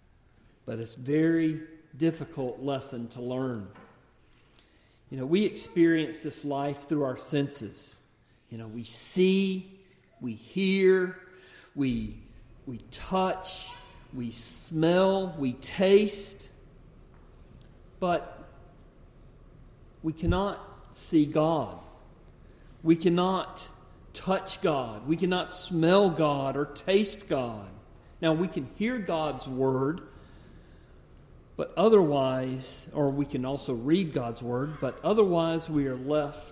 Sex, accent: male, American